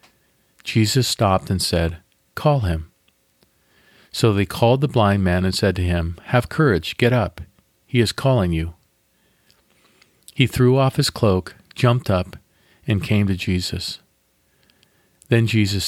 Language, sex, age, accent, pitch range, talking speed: English, male, 40-59, American, 90-115 Hz, 140 wpm